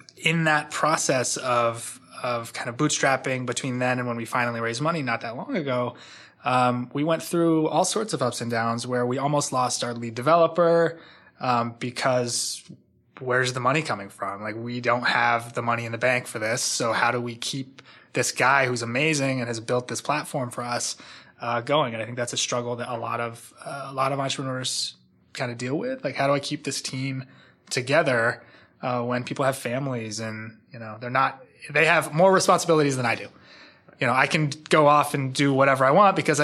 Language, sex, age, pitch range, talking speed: English, male, 20-39, 120-145 Hz, 210 wpm